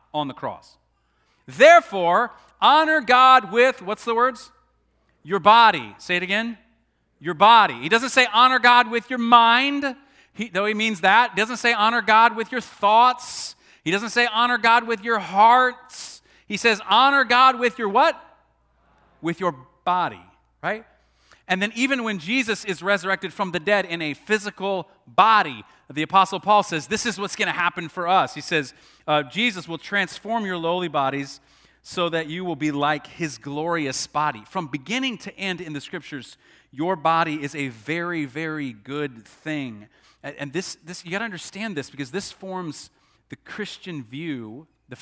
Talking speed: 170 wpm